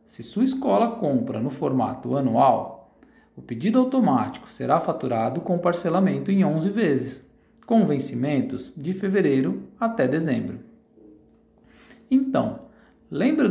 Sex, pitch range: male, 140-220 Hz